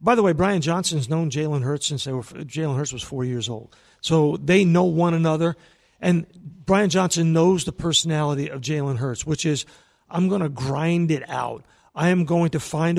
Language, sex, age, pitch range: English, male, 50-69, 160-200 Hz